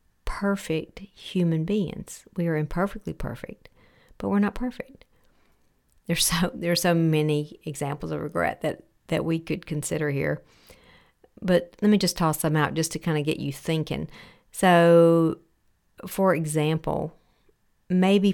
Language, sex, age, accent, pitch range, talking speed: English, female, 50-69, American, 150-175 Hz, 140 wpm